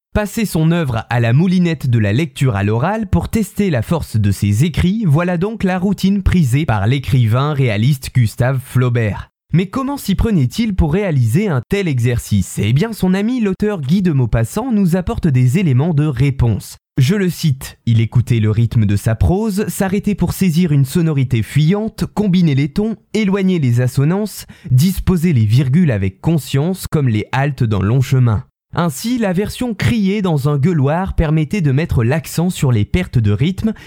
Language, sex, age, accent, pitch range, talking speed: French, male, 20-39, French, 125-185 Hz, 180 wpm